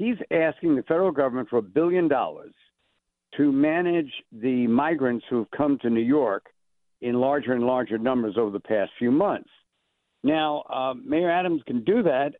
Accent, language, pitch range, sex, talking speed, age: American, English, 125-165 Hz, male, 175 wpm, 60-79